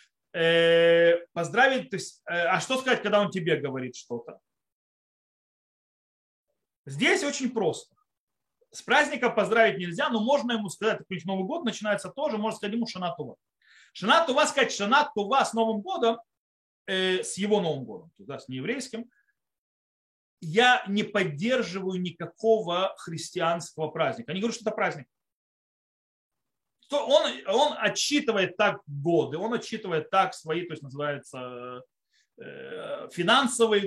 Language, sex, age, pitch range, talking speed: Russian, male, 30-49, 155-235 Hz, 130 wpm